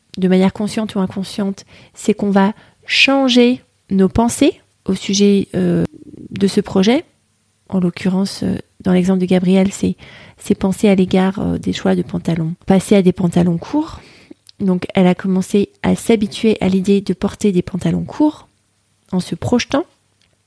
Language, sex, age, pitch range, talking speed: French, female, 30-49, 180-215 Hz, 155 wpm